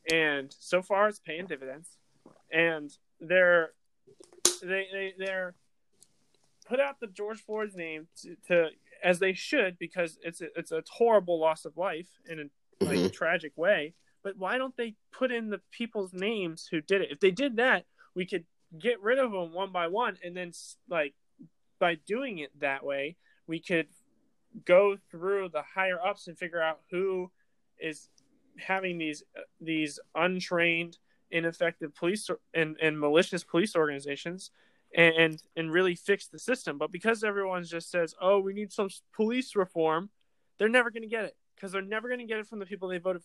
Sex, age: male, 20-39